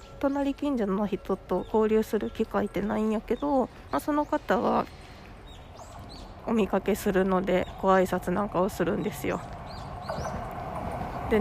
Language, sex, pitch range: Japanese, female, 185-245 Hz